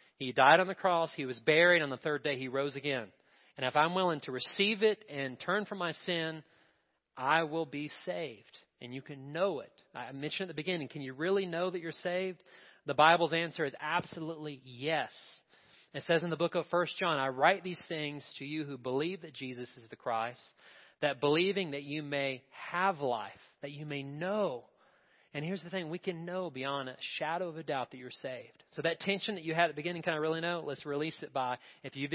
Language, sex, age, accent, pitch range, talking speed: English, male, 30-49, American, 135-175 Hz, 225 wpm